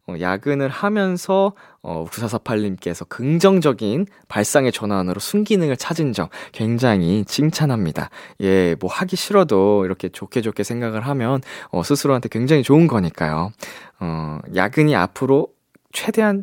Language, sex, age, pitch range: Korean, male, 20-39, 105-160 Hz